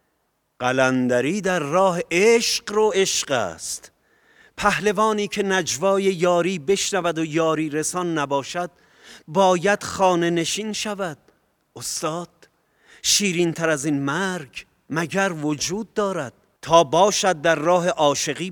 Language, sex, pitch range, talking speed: Persian, male, 135-175 Hz, 105 wpm